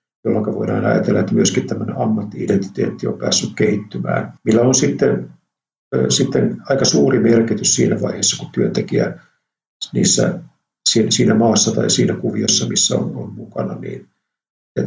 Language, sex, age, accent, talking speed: Finnish, male, 60-79, native, 140 wpm